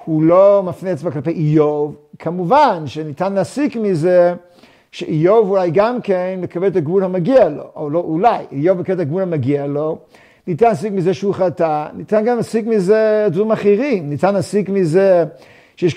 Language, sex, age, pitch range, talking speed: Hebrew, male, 50-69, 160-195 Hz, 160 wpm